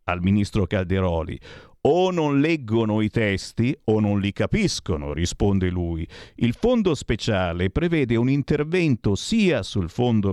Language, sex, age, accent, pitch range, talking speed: Italian, male, 50-69, native, 100-155 Hz, 135 wpm